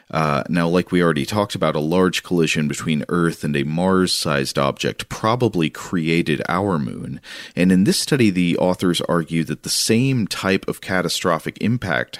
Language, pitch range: English, 80-95 Hz